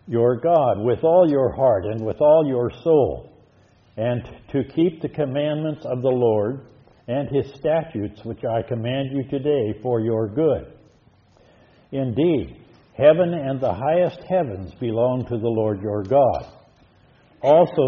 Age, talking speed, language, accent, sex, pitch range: 60-79, 145 wpm, English, American, male, 115-150 Hz